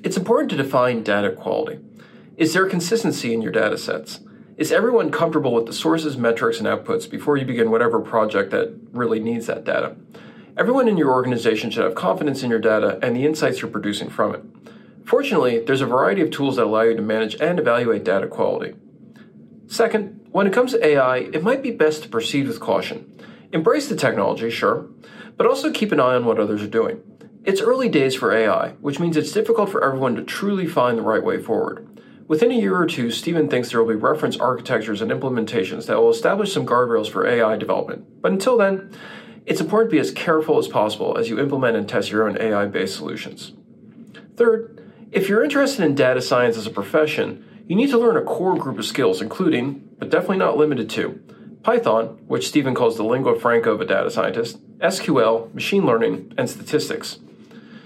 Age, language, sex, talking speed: 40-59, English, male, 200 wpm